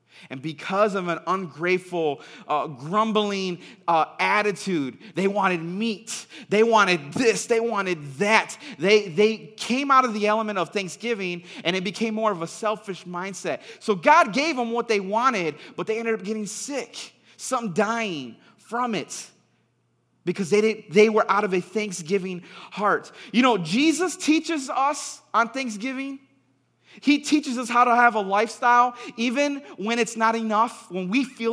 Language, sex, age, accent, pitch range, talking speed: English, male, 30-49, American, 185-240 Hz, 160 wpm